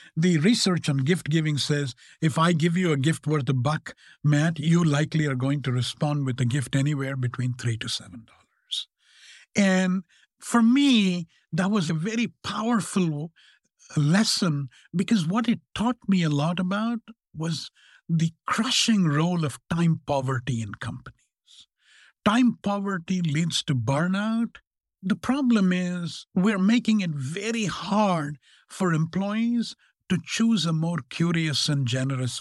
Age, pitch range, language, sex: 60-79, 145-200 Hz, English, male